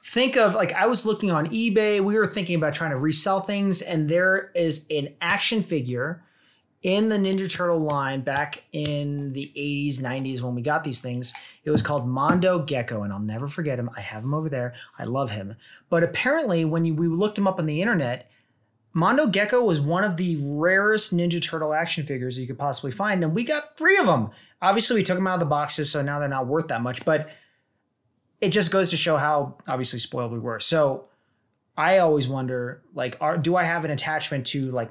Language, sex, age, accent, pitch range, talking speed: English, male, 30-49, American, 125-170 Hz, 215 wpm